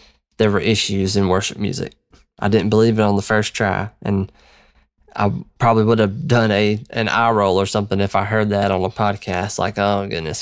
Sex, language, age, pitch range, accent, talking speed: male, English, 20-39, 100-120 Hz, American, 205 wpm